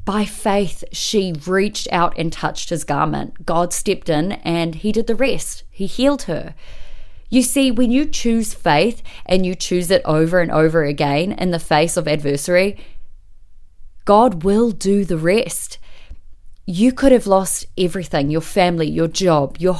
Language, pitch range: English, 165-215 Hz